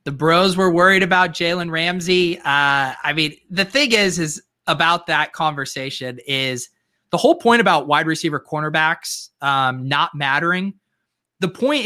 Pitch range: 140-175 Hz